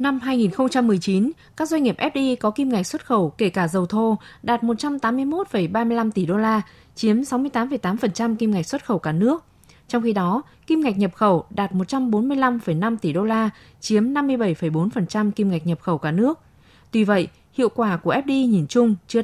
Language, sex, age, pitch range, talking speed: Vietnamese, female, 20-39, 190-245 Hz, 180 wpm